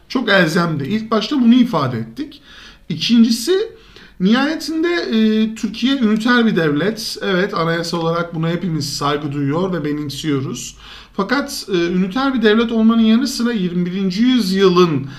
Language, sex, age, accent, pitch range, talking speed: Turkish, male, 50-69, native, 155-240 Hz, 130 wpm